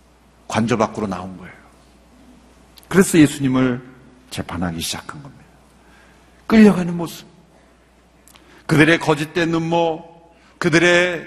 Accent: native